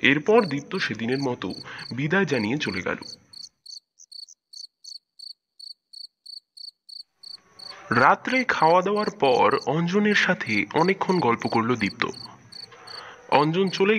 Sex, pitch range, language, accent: male, 135-210 Hz, Bengali, native